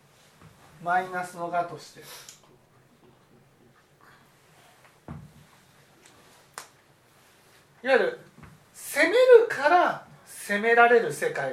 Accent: native